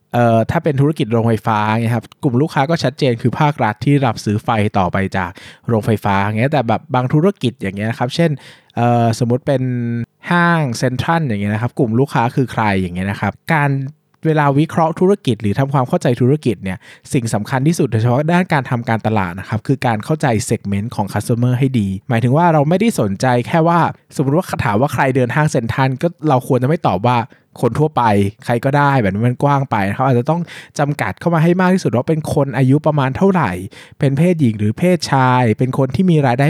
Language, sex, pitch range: Thai, male, 115-150 Hz